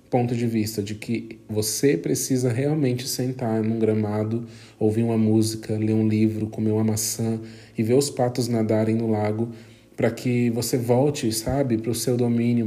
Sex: male